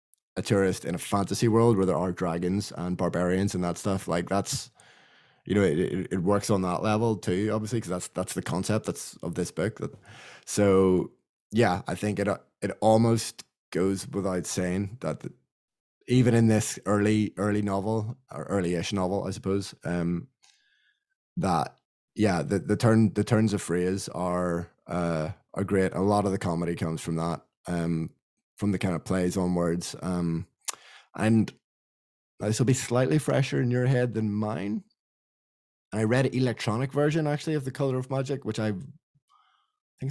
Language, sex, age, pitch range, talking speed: English, male, 20-39, 90-115 Hz, 170 wpm